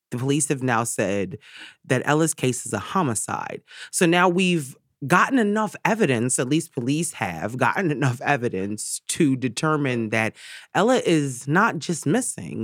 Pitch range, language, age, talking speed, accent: 115-160 Hz, English, 30-49, 150 wpm, American